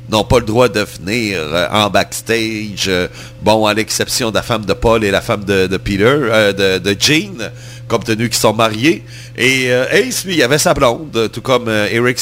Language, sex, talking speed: French, male, 225 wpm